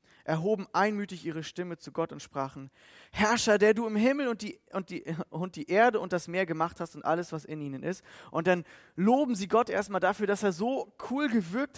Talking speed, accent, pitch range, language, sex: 220 wpm, German, 145-200 Hz, German, male